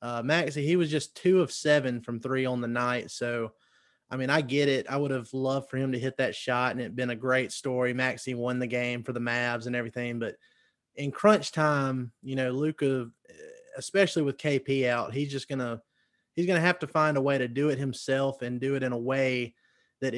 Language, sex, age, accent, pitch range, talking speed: English, male, 20-39, American, 120-145 Hz, 230 wpm